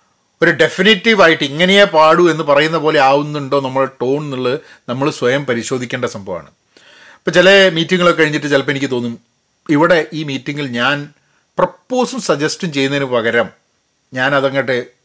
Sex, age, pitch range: male, 40-59, 130-170 Hz